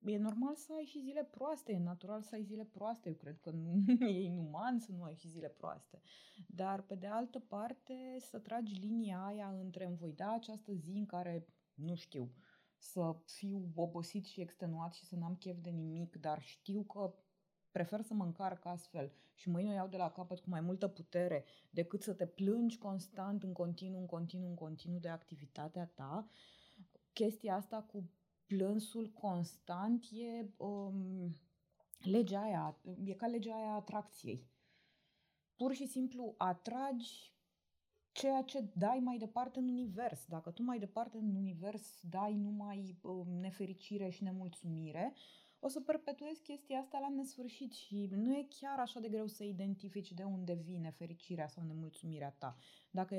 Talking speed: 165 wpm